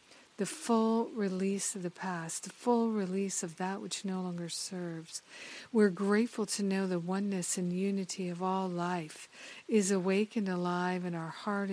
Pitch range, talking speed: 180-205 Hz, 165 wpm